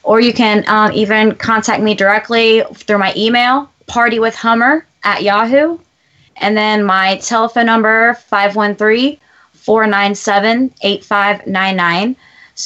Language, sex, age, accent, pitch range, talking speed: English, female, 20-39, American, 200-240 Hz, 95 wpm